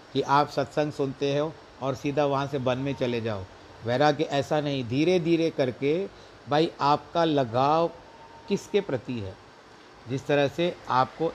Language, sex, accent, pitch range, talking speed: Hindi, male, native, 120-150 Hz, 160 wpm